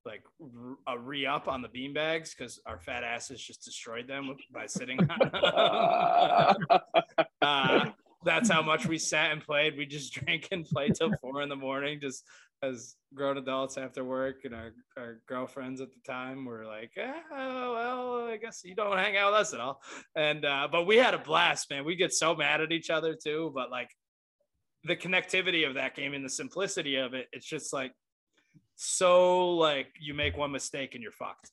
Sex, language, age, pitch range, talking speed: male, English, 20-39, 135-180 Hz, 190 wpm